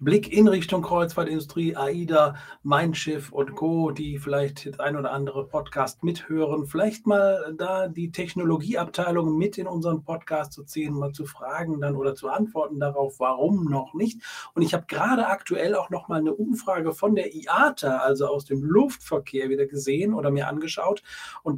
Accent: German